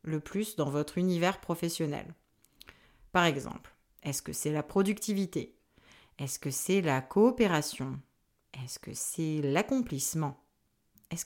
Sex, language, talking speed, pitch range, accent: female, French, 125 wpm, 155-200 Hz, French